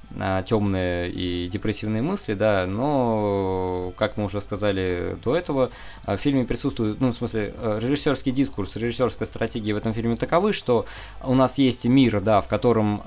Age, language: 20-39, Russian